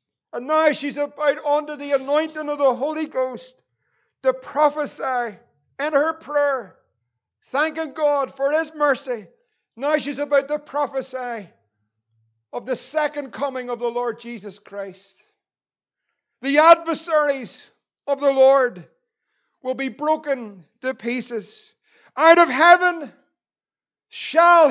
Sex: male